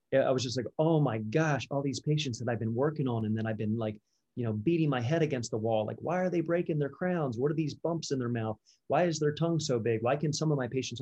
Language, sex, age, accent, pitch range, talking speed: English, male, 30-49, American, 115-135 Hz, 295 wpm